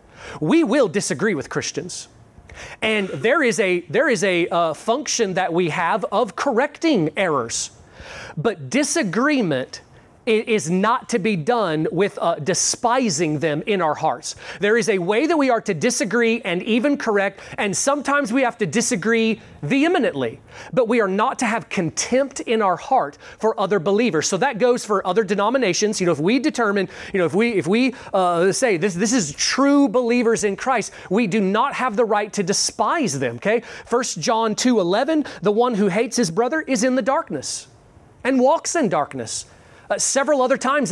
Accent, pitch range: American, 180-245 Hz